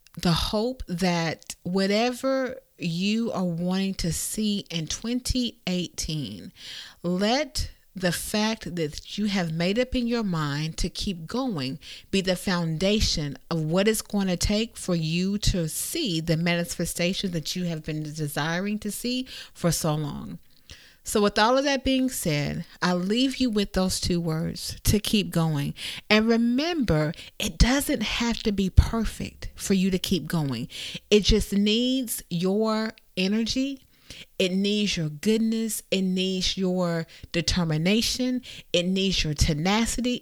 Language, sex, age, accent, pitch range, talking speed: English, female, 40-59, American, 170-220 Hz, 145 wpm